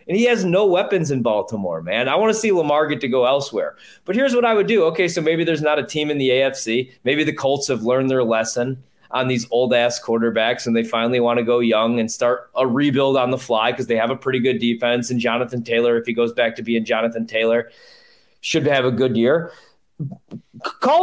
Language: English